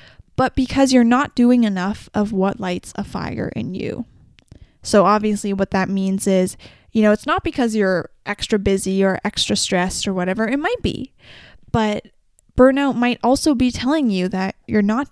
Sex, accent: female, American